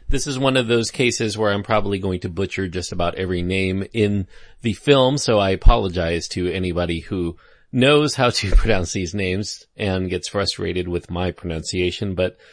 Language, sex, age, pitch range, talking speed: English, male, 40-59, 90-130 Hz, 180 wpm